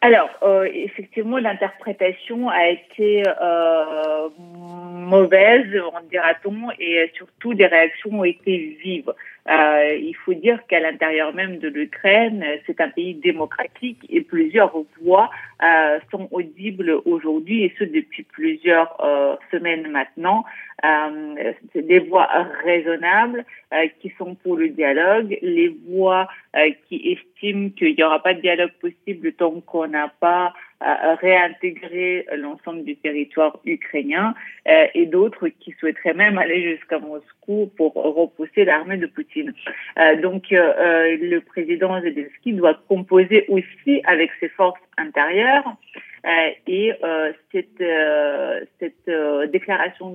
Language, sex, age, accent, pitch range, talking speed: French, female, 50-69, French, 165-220 Hz, 125 wpm